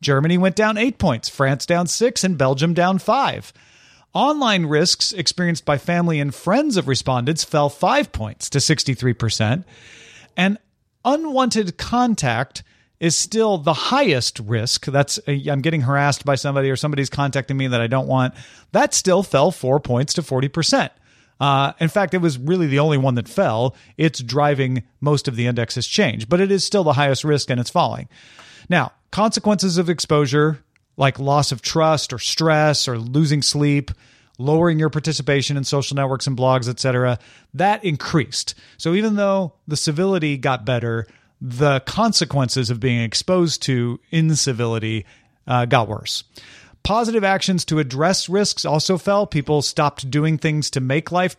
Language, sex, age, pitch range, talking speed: English, male, 40-59, 135-180 Hz, 160 wpm